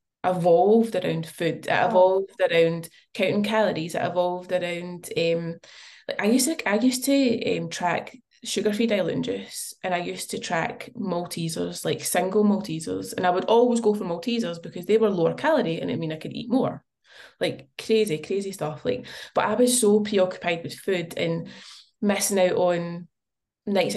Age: 20-39